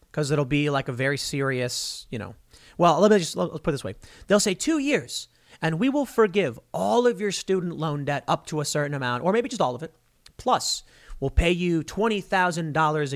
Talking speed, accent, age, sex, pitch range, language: 220 wpm, American, 30-49, male, 145-210 Hz, English